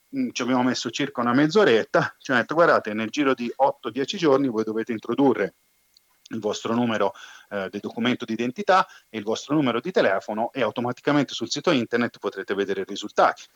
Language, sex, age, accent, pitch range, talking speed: Italian, male, 30-49, native, 110-145 Hz, 175 wpm